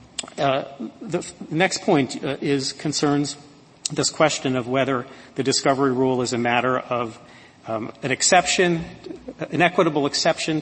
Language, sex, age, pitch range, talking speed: English, male, 40-59, 130-150 Hz, 140 wpm